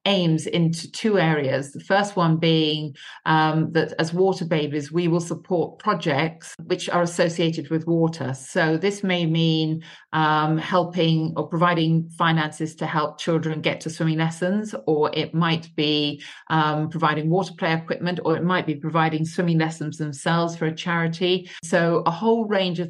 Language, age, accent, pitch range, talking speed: English, 40-59, British, 155-175 Hz, 165 wpm